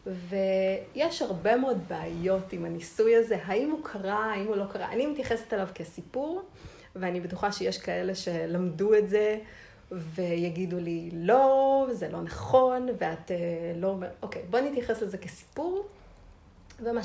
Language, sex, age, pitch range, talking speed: Hebrew, female, 30-49, 175-245 Hz, 145 wpm